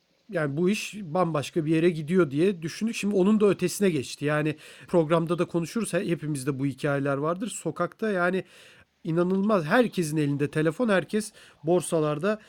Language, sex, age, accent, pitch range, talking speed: Turkish, male, 40-59, native, 150-190 Hz, 145 wpm